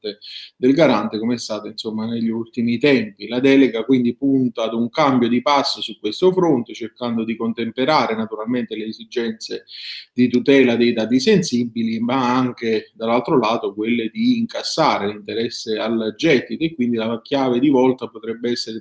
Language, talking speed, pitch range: Italian, 160 wpm, 110-130 Hz